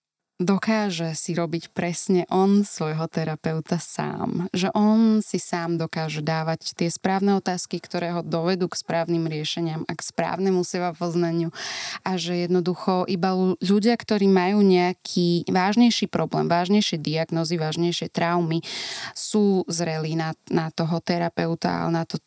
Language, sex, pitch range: Slovak, female, 165-195 Hz